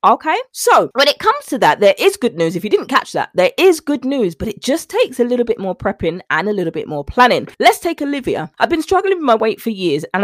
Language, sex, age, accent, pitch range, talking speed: English, female, 20-39, British, 175-265 Hz, 275 wpm